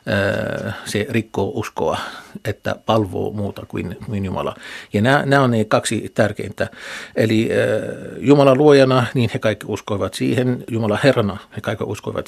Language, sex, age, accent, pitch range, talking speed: Finnish, male, 60-79, native, 105-120 Hz, 145 wpm